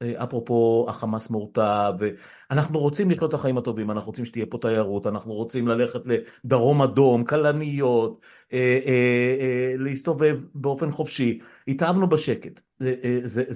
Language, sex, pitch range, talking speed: Hebrew, male, 115-140 Hz, 115 wpm